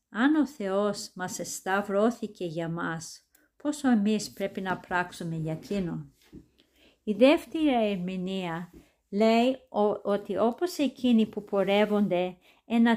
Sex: female